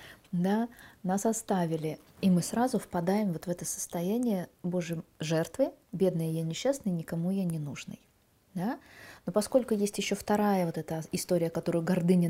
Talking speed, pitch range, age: 150 wpm, 165-205 Hz, 20-39